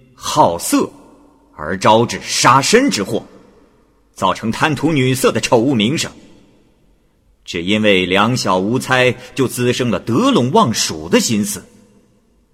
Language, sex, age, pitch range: Chinese, male, 50-69, 105-155 Hz